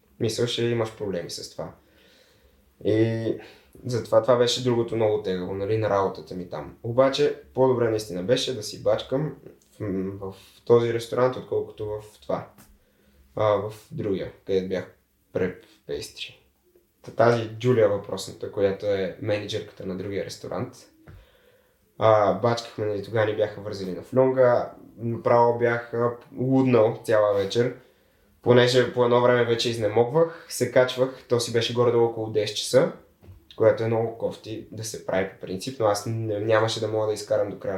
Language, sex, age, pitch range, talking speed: Bulgarian, male, 20-39, 110-130 Hz, 150 wpm